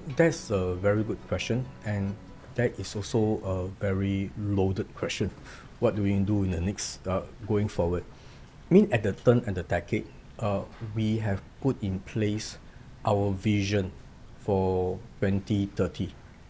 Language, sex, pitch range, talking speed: Vietnamese, male, 95-120 Hz, 150 wpm